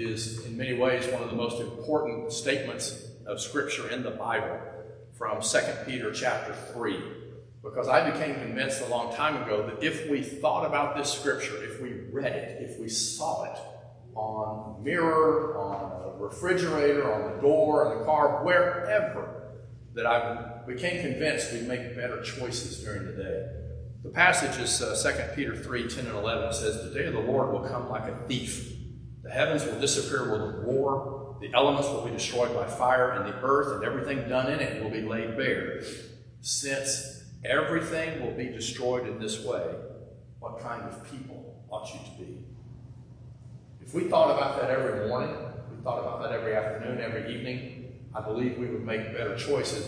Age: 50-69